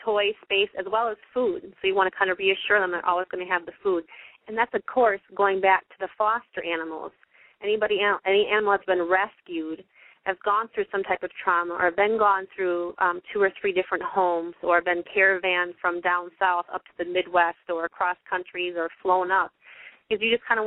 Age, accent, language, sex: 30-49, American, English, female